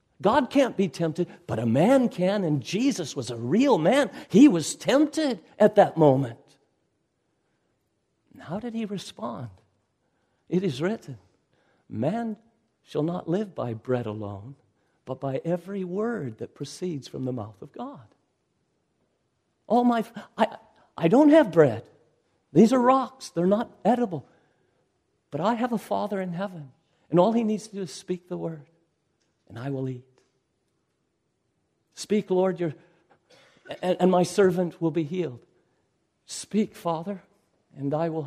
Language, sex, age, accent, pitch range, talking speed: English, male, 50-69, American, 155-225 Hz, 145 wpm